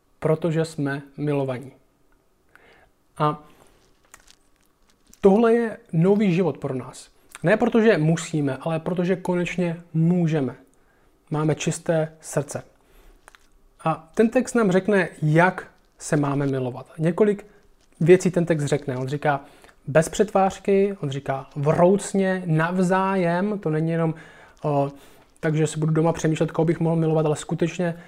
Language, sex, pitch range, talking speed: Czech, male, 150-185 Hz, 120 wpm